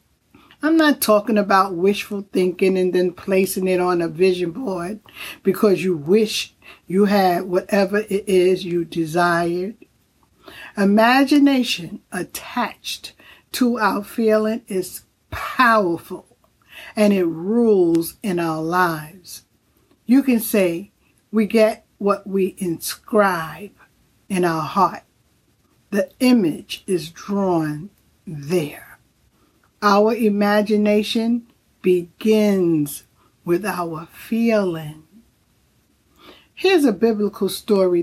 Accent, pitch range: American, 180-220 Hz